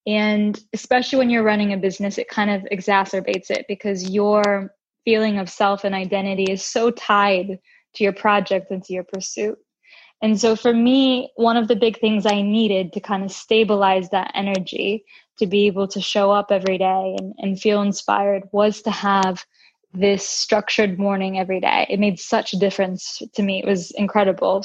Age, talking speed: 10-29, 185 wpm